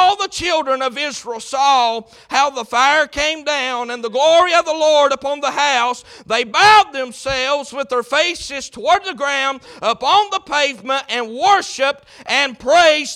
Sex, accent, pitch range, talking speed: male, American, 265-330 Hz, 165 wpm